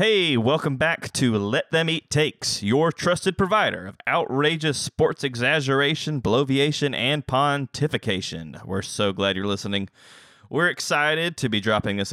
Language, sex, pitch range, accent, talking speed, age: English, male, 110-145 Hz, American, 145 wpm, 30-49